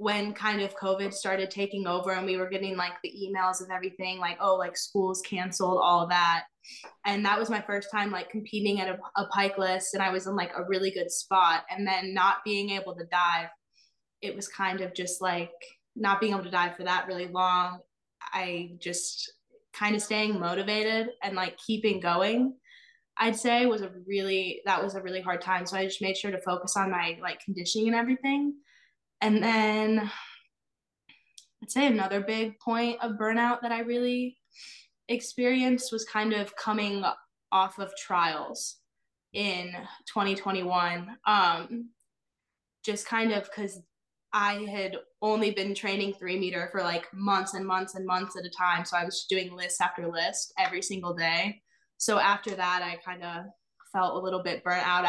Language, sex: English, female